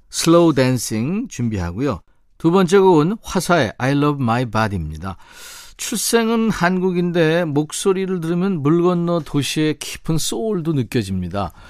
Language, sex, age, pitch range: Korean, male, 50-69, 115-175 Hz